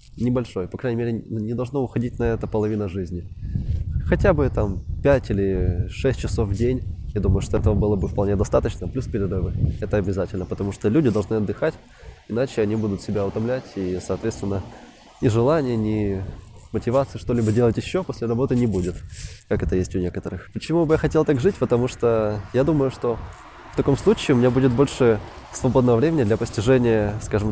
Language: Russian